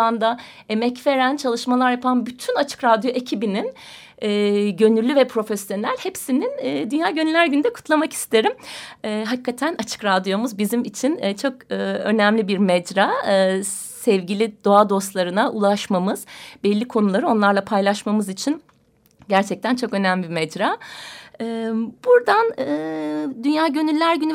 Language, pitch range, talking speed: Turkish, 205-265 Hz, 130 wpm